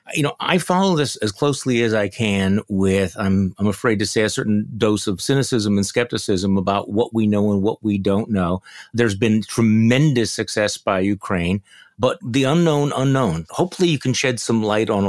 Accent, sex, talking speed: American, male, 195 wpm